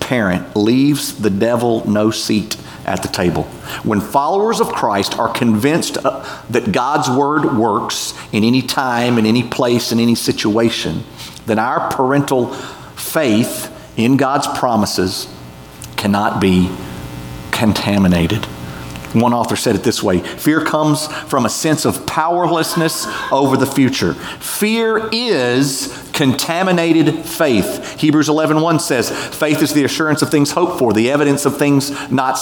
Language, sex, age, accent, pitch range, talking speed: English, male, 40-59, American, 105-155 Hz, 135 wpm